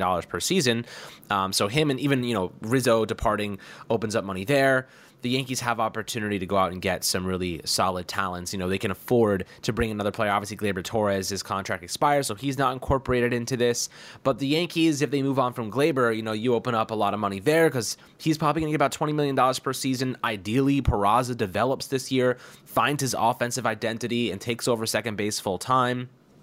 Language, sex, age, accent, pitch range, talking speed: English, male, 20-39, American, 100-130 Hz, 215 wpm